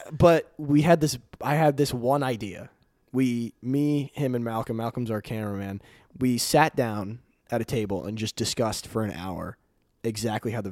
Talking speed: 180 wpm